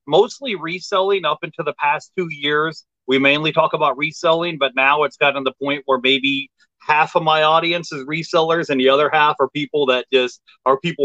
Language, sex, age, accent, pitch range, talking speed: English, male, 30-49, American, 140-175 Hz, 205 wpm